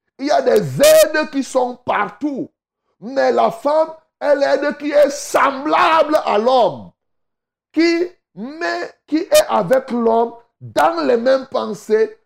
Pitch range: 210-290 Hz